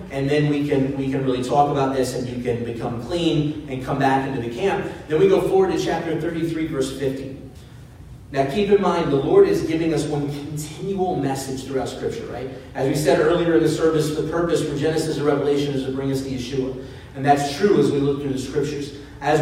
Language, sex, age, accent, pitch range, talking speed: English, male, 30-49, American, 135-170 Hz, 230 wpm